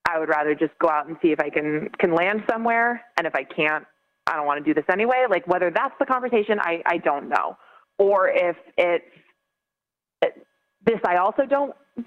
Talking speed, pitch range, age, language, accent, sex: 210 wpm, 165-225 Hz, 30-49, English, American, female